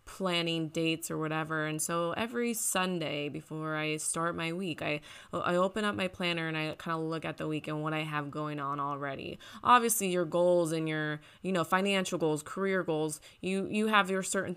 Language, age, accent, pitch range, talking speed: English, 20-39, American, 155-180 Hz, 205 wpm